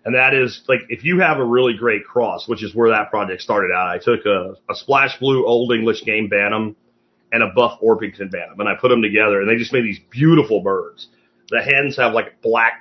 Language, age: English, 30-49